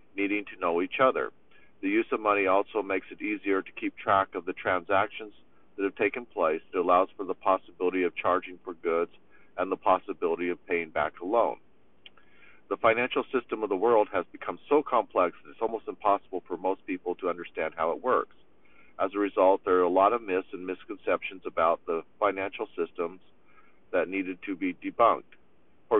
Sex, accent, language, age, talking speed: male, American, English, 50-69, 190 wpm